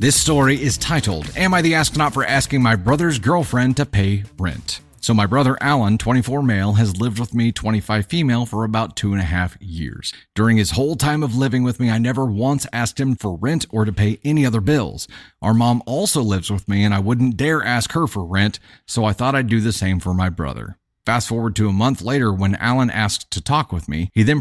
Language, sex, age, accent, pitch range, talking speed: English, male, 30-49, American, 100-135 Hz, 235 wpm